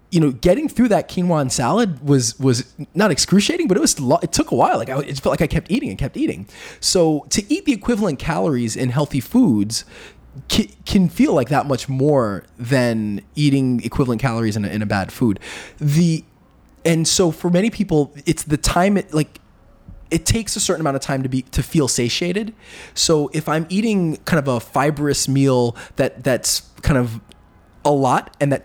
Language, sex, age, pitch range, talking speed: English, male, 20-39, 125-170 Hz, 200 wpm